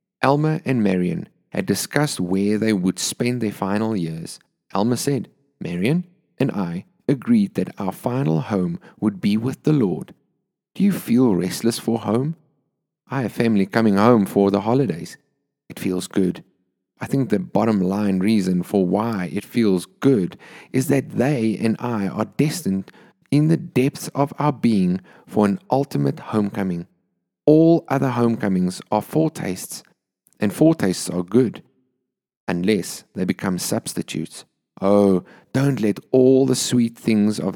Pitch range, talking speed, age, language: 100-145 Hz, 150 wpm, 30-49, English